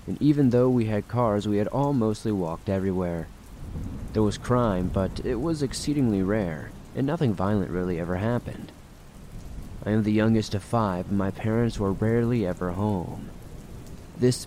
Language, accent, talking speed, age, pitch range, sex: English, American, 165 wpm, 30-49, 95-120 Hz, male